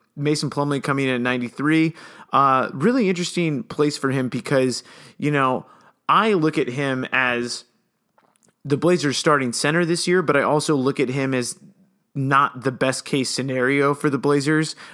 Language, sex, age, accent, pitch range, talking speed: English, male, 30-49, American, 130-150 Hz, 160 wpm